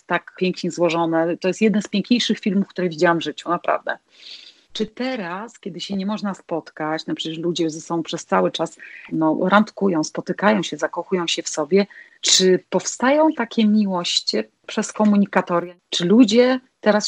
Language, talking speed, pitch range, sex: Polish, 160 wpm, 170-205 Hz, female